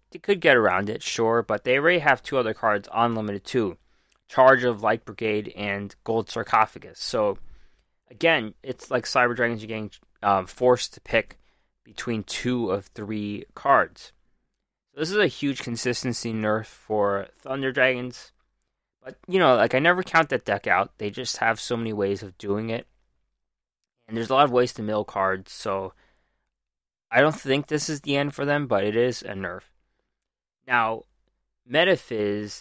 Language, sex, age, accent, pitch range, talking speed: English, male, 20-39, American, 100-125 Hz, 170 wpm